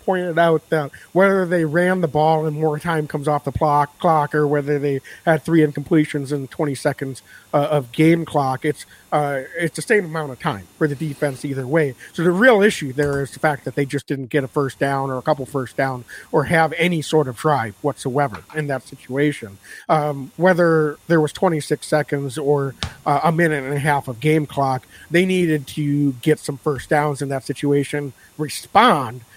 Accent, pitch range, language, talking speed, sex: American, 145-180 Hz, English, 200 wpm, male